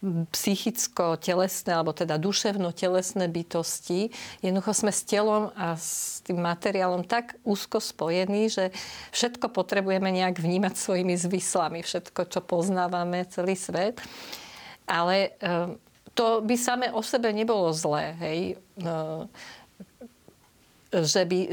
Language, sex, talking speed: Slovak, female, 110 wpm